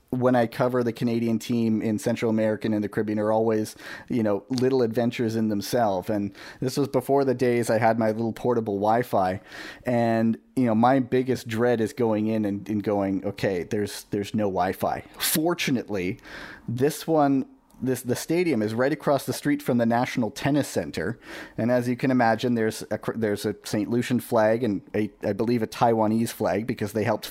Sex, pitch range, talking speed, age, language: male, 105-125 Hz, 190 wpm, 30-49, English